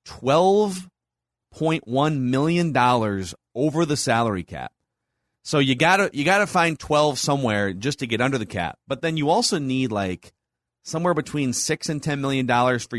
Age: 30-49